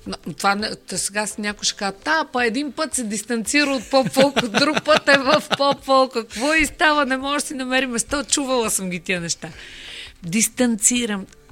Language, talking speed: Bulgarian, 200 wpm